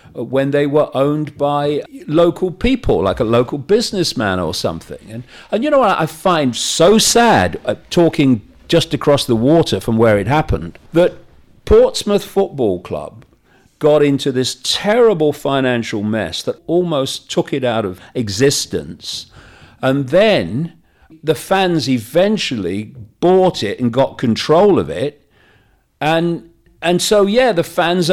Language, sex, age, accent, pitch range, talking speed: English, male, 50-69, British, 125-195 Hz, 145 wpm